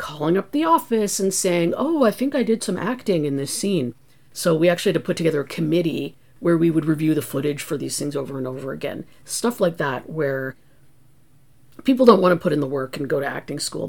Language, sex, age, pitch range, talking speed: English, female, 50-69, 140-200 Hz, 240 wpm